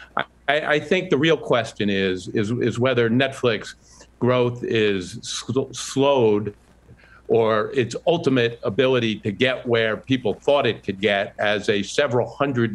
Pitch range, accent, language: 105-130 Hz, American, English